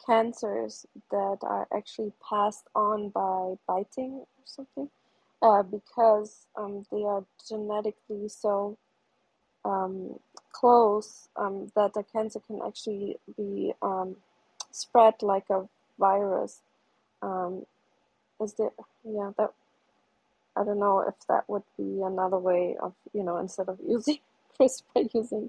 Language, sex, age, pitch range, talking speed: English, female, 20-39, 195-220 Hz, 125 wpm